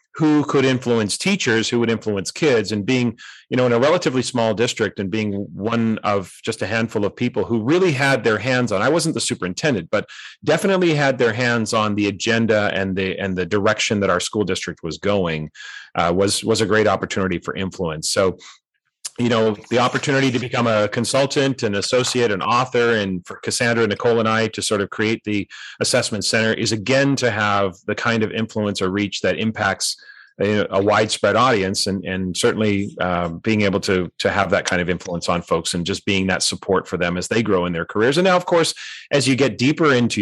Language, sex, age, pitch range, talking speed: English, male, 30-49, 95-125 Hz, 210 wpm